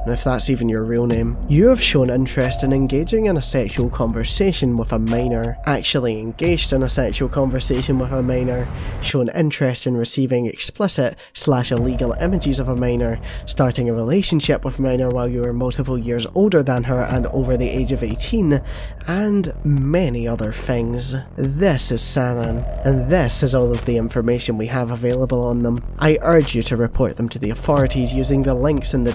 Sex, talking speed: male, 185 wpm